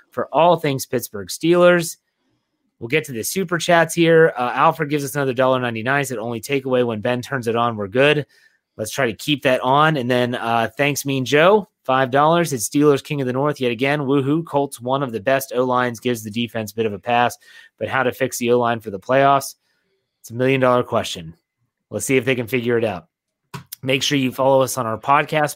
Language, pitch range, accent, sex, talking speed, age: English, 125-150 Hz, American, male, 225 wpm, 30-49